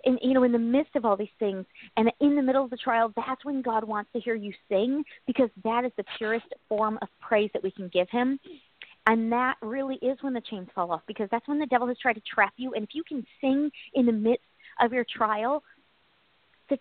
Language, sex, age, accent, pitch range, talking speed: English, female, 40-59, American, 220-275 Hz, 240 wpm